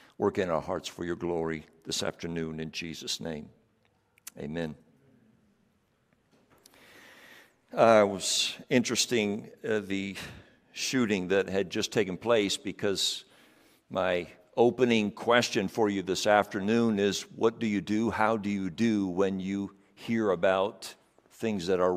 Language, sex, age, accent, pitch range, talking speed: English, male, 60-79, American, 95-125 Hz, 135 wpm